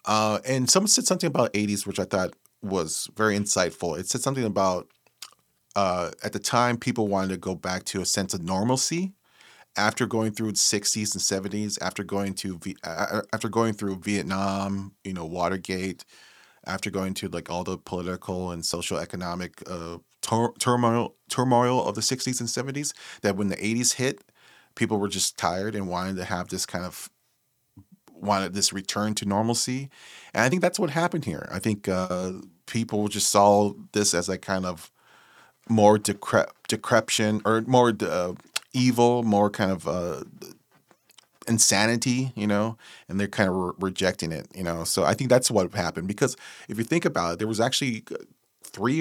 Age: 30-49